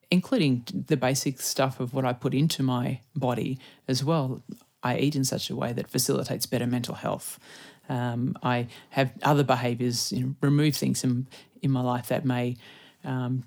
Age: 30-49